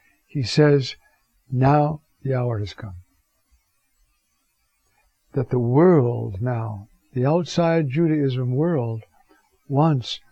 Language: English